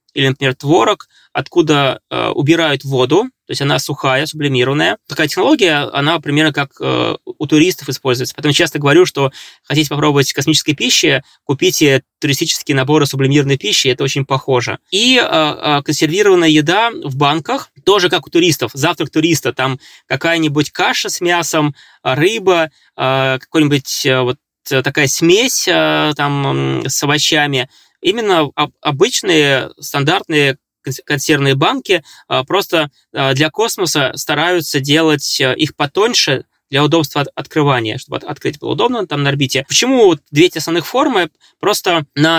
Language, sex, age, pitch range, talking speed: Russian, male, 20-39, 140-165 Hz, 120 wpm